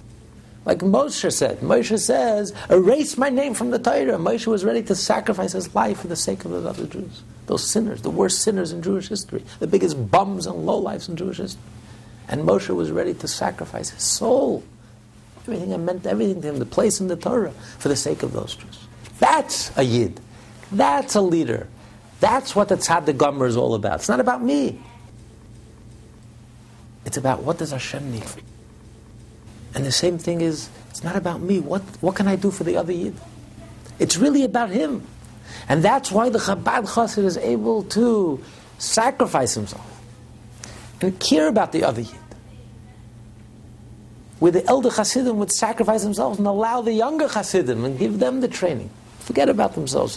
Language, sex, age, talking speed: English, male, 60-79, 180 wpm